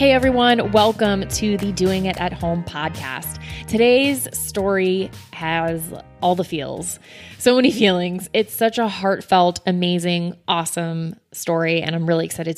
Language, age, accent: English, 20-39, American